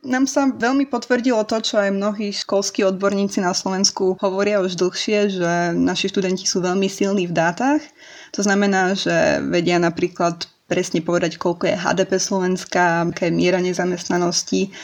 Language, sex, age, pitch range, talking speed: Slovak, female, 20-39, 180-205 Hz, 150 wpm